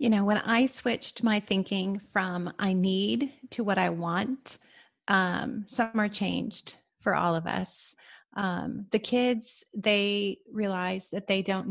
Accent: American